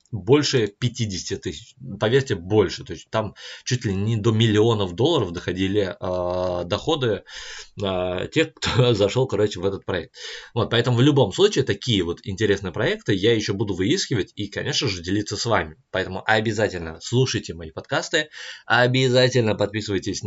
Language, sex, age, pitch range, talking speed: Russian, male, 20-39, 95-115 Hz, 150 wpm